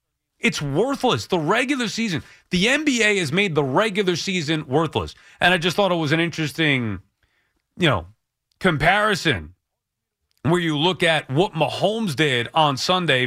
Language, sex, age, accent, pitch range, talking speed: English, male, 30-49, American, 125-180 Hz, 150 wpm